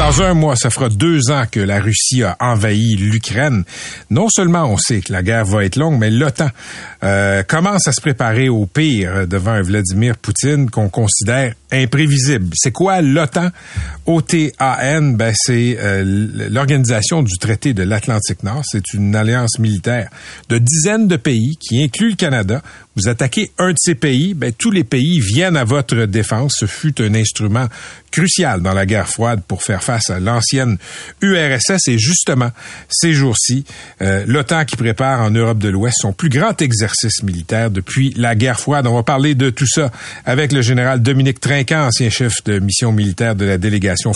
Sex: male